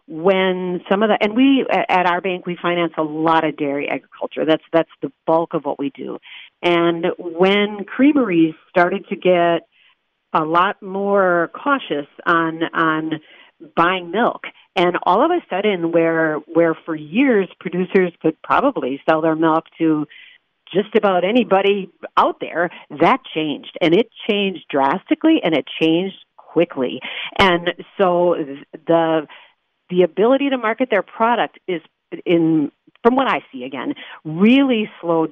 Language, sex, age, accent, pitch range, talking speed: English, female, 50-69, American, 155-195 Hz, 145 wpm